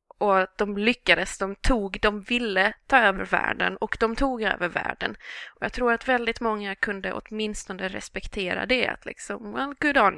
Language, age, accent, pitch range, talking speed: English, 20-39, Swedish, 190-235 Hz, 185 wpm